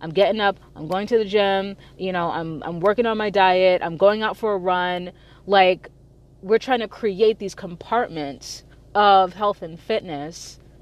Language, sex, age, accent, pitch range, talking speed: English, female, 30-49, American, 140-205 Hz, 185 wpm